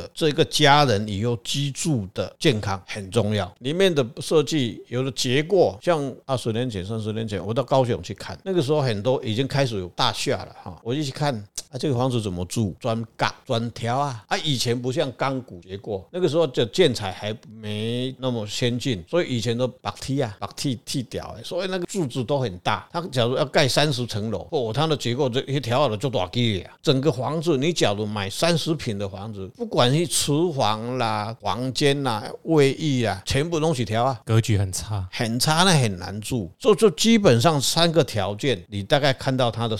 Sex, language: male, Chinese